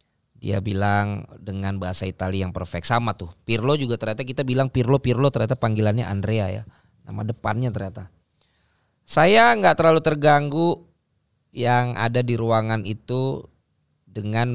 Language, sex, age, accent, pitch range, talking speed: Indonesian, male, 20-39, native, 100-125 Hz, 135 wpm